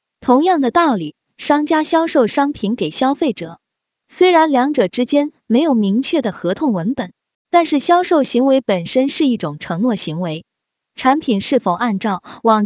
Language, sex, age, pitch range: Chinese, female, 20-39, 205-295 Hz